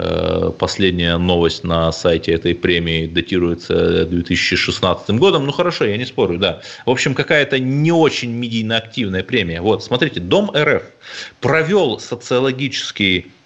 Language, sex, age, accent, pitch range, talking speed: Russian, male, 30-49, native, 120-185 Hz, 125 wpm